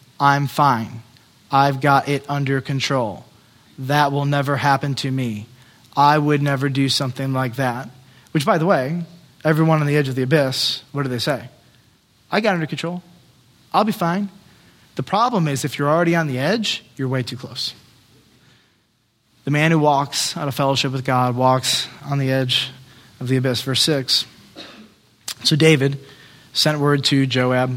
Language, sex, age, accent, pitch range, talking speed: English, male, 20-39, American, 130-160 Hz, 170 wpm